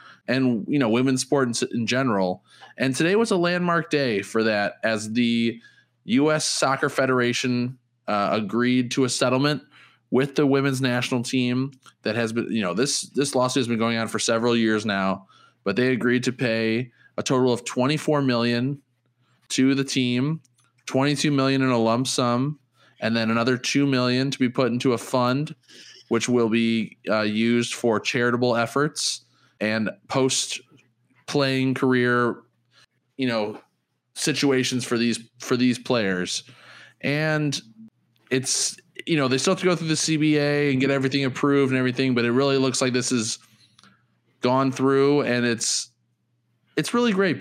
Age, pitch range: 20-39, 115-135 Hz